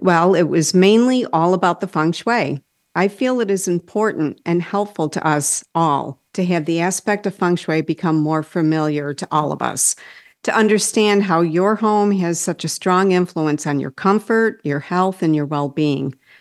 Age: 50-69